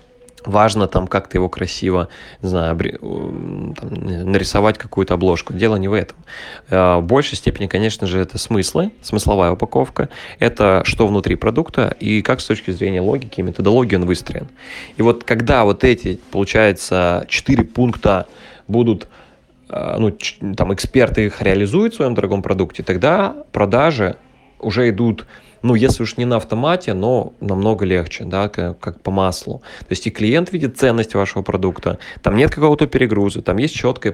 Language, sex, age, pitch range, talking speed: Russian, male, 20-39, 95-120 Hz, 155 wpm